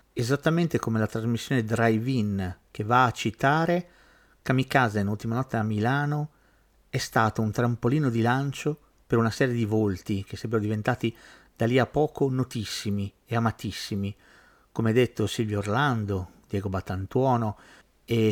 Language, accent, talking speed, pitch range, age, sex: Italian, native, 140 wpm, 105-135 Hz, 50-69, male